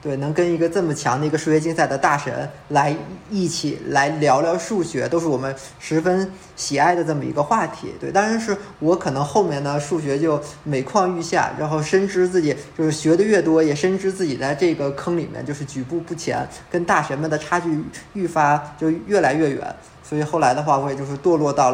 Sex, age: male, 20-39